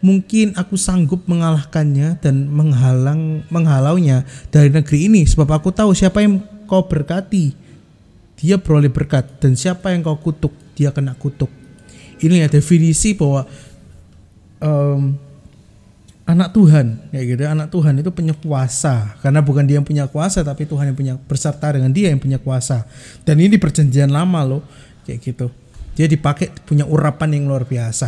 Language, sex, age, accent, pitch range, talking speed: Indonesian, male, 20-39, native, 135-165 Hz, 155 wpm